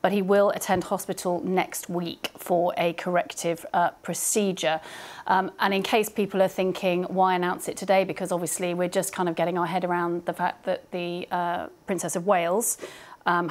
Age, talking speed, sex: 30-49, 185 wpm, female